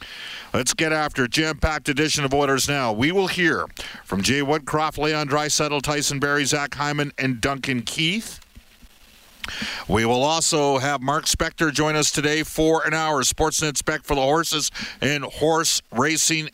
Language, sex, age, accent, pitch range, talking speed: English, male, 50-69, American, 135-155 Hz, 155 wpm